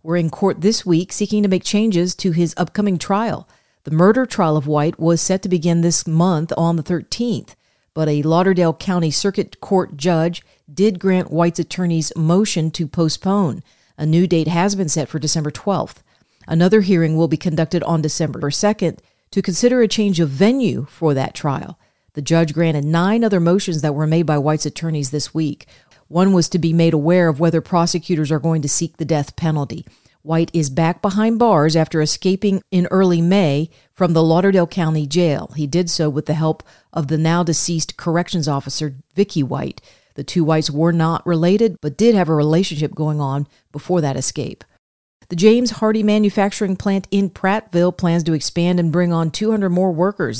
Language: English